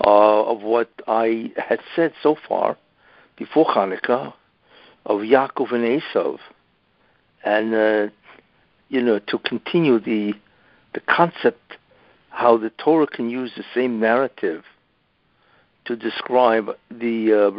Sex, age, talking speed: male, 60-79, 120 wpm